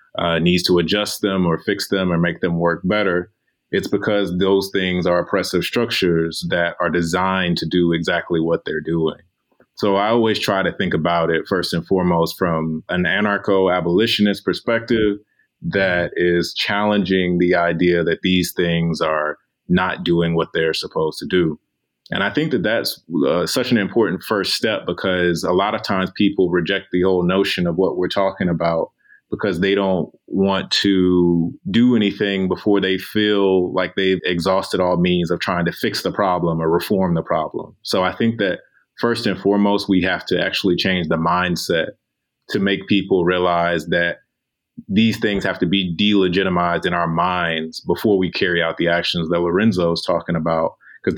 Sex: male